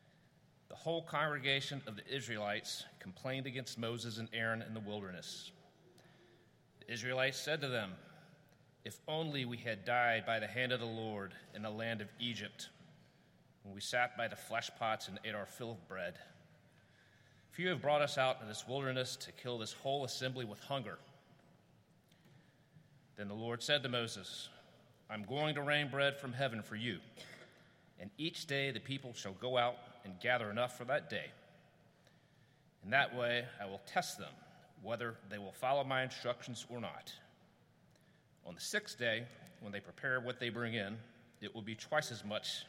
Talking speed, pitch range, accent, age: 175 wpm, 115-145 Hz, American, 40-59